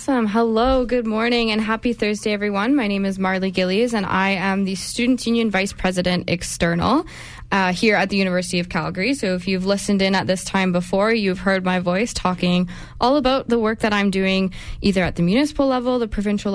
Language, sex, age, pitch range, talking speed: English, female, 10-29, 180-220 Hz, 205 wpm